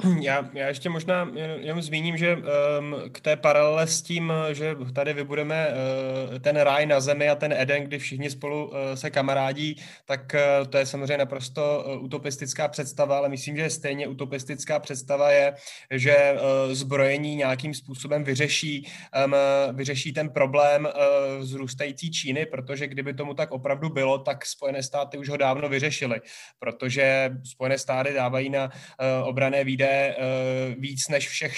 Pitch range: 135-145 Hz